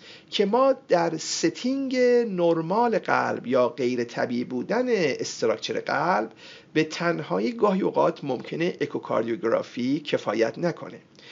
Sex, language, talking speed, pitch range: male, Persian, 100 wpm, 155-235 Hz